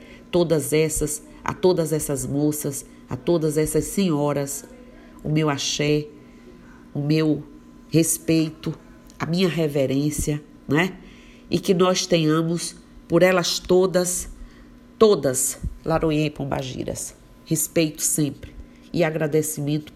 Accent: Brazilian